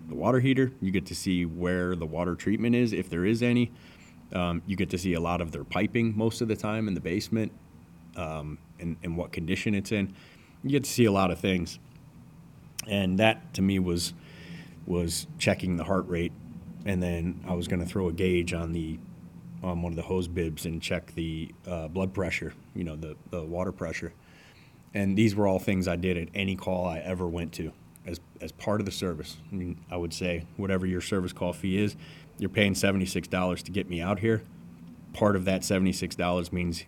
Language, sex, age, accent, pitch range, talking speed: English, male, 30-49, American, 85-100 Hz, 215 wpm